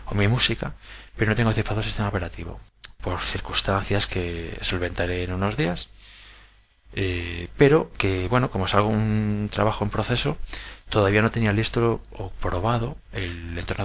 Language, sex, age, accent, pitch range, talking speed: Spanish, male, 20-39, Spanish, 95-110 Hz, 150 wpm